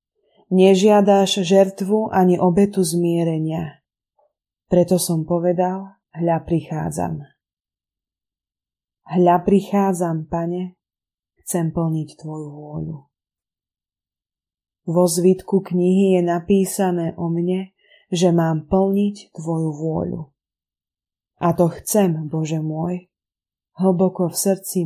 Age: 20-39